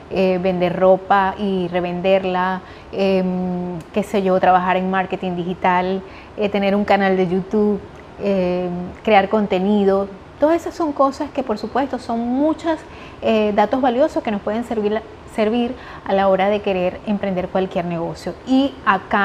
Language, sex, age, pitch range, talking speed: Spanish, female, 20-39, 195-230 Hz, 150 wpm